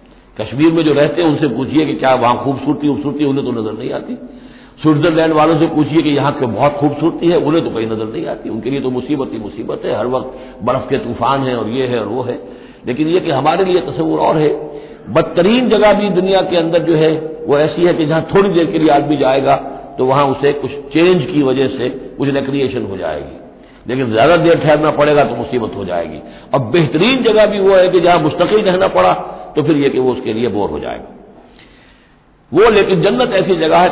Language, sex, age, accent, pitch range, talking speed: Hindi, male, 60-79, native, 125-175 Hz, 225 wpm